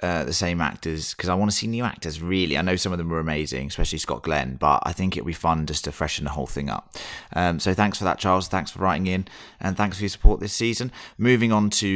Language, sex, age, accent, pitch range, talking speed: English, male, 30-49, British, 80-105 Hz, 280 wpm